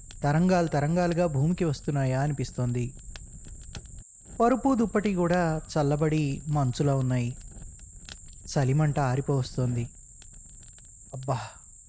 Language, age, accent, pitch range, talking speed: Telugu, 20-39, native, 135-175 Hz, 75 wpm